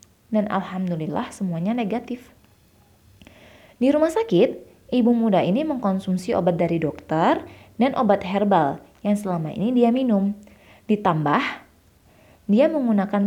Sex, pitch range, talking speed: female, 185-245 Hz, 115 wpm